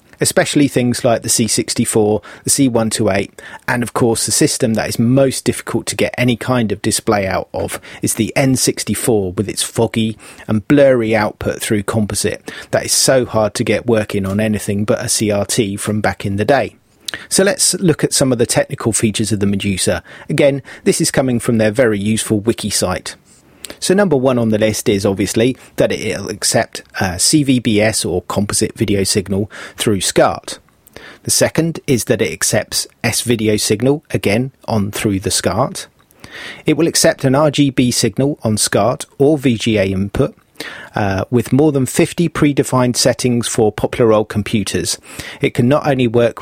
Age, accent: 30-49, British